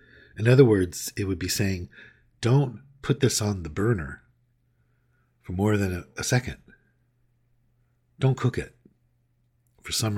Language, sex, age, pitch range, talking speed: English, male, 50-69, 95-120 Hz, 140 wpm